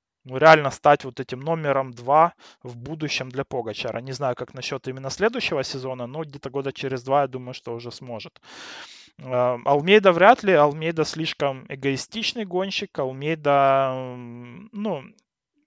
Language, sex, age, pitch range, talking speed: Russian, male, 20-39, 130-160 Hz, 140 wpm